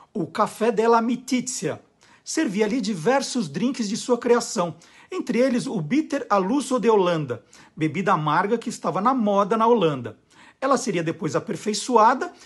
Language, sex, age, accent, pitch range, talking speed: Portuguese, male, 50-69, Brazilian, 200-250 Hz, 145 wpm